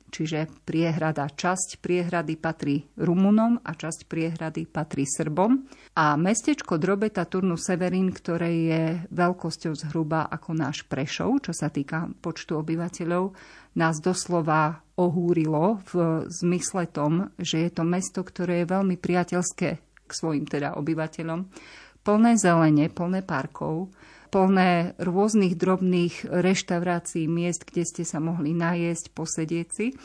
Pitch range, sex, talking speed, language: 160-190 Hz, female, 125 wpm, Slovak